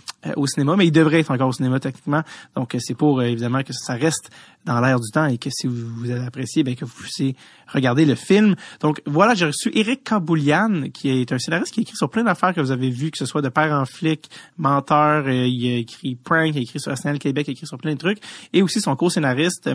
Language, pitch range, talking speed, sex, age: French, 130-165 Hz, 255 wpm, male, 30-49